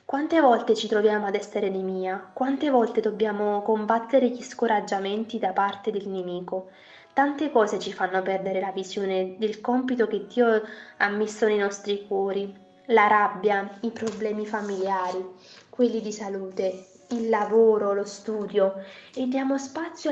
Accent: native